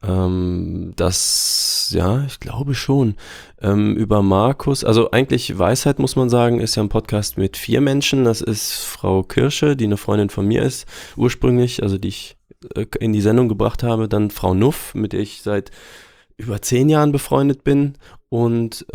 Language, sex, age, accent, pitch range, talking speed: German, male, 20-39, German, 100-125 Hz, 165 wpm